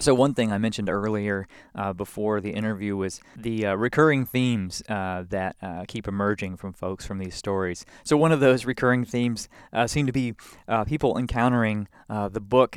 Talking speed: 195 wpm